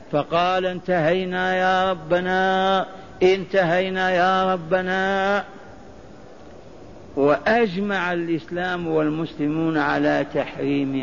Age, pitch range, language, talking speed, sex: 50-69, 160-190 Hz, Arabic, 65 wpm, male